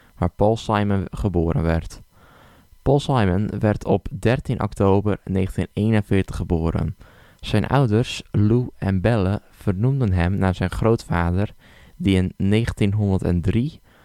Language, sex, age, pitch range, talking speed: Dutch, male, 10-29, 90-110 Hz, 110 wpm